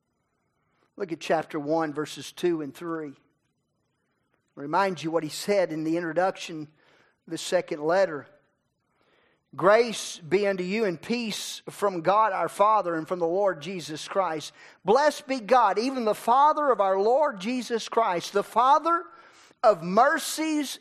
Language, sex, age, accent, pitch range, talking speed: English, male, 40-59, American, 150-220 Hz, 145 wpm